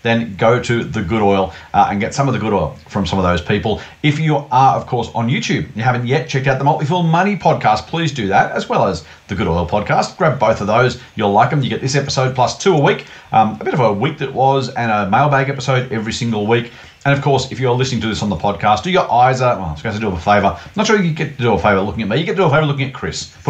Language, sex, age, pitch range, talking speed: English, male, 40-59, 100-140 Hz, 305 wpm